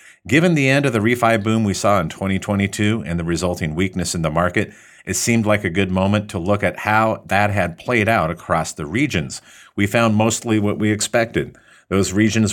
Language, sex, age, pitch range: English, male, 50-69, 85-110 Hz